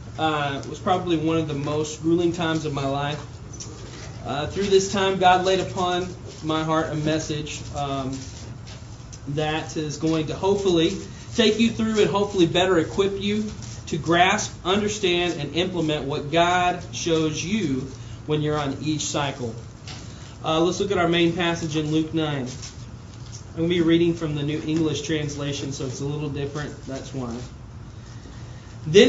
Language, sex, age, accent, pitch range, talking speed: English, male, 20-39, American, 135-185 Hz, 165 wpm